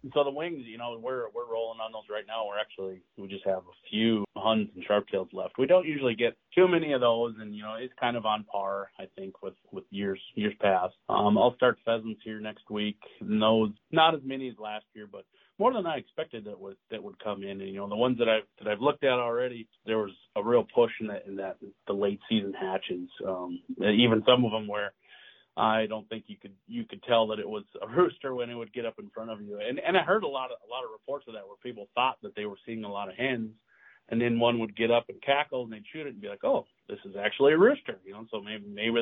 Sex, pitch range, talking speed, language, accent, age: male, 105-125 Hz, 270 wpm, English, American, 30-49